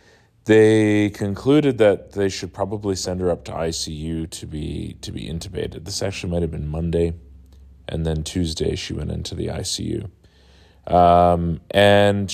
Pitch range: 80-100 Hz